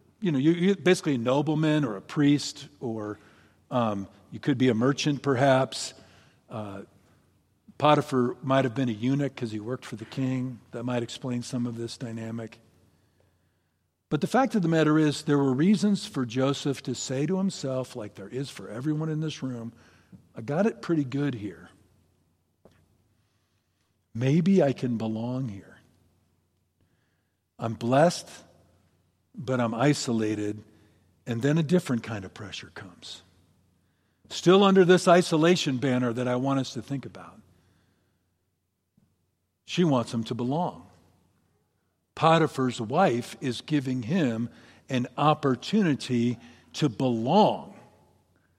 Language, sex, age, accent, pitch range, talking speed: English, male, 50-69, American, 100-150 Hz, 135 wpm